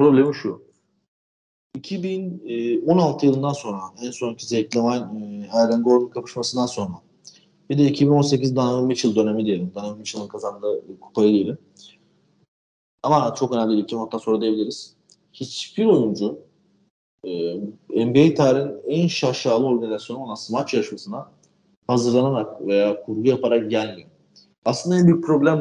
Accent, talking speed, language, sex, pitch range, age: native, 110 wpm, Turkish, male, 115-140 Hz, 40-59